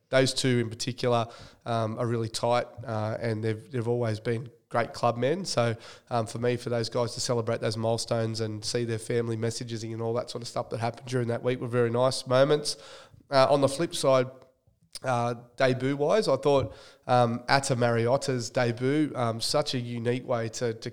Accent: Australian